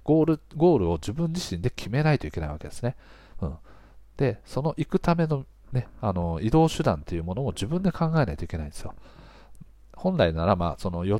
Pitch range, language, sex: 90-140 Hz, Japanese, male